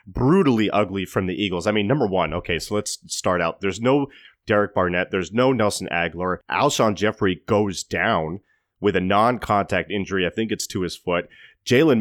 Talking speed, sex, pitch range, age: 185 wpm, male, 90-110 Hz, 30-49